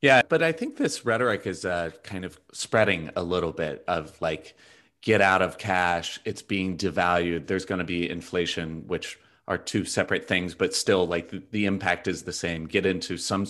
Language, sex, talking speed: English, male, 195 wpm